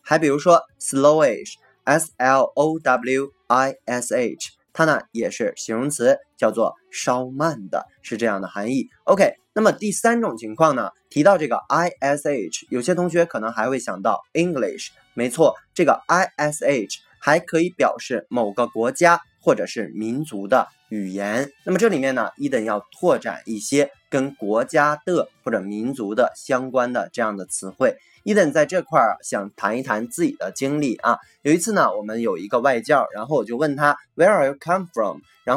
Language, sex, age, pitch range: Chinese, male, 20-39, 125-170 Hz